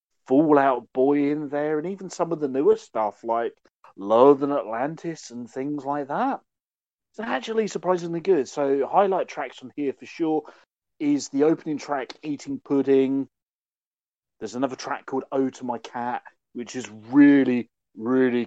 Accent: British